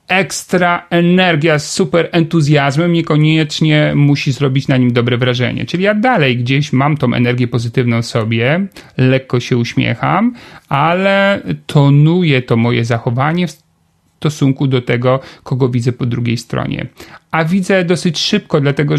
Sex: male